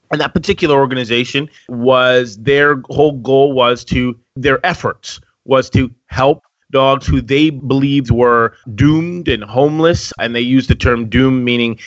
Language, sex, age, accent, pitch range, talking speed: English, male, 30-49, American, 120-145 Hz, 150 wpm